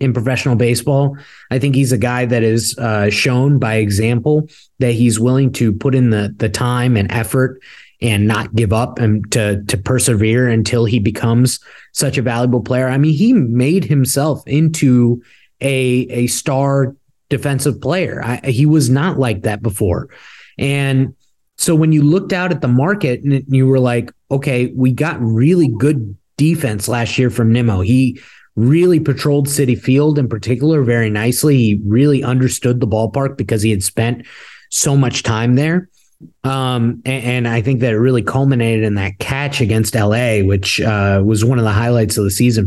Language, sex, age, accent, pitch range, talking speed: English, male, 20-39, American, 110-135 Hz, 180 wpm